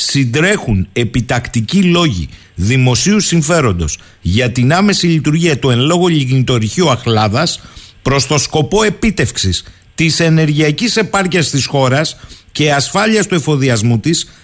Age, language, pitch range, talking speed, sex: 50-69, Greek, 125-170 Hz, 115 wpm, male